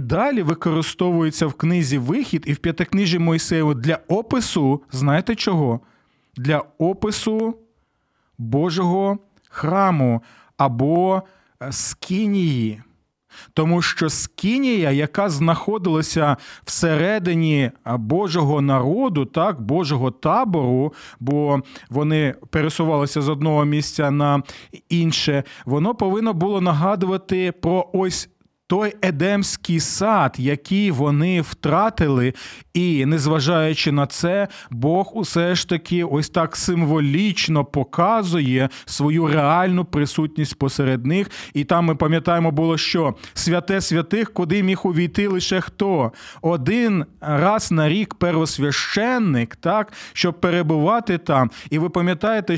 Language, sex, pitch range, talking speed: Ukrainian, male, 145-190 Hz, 105 wpm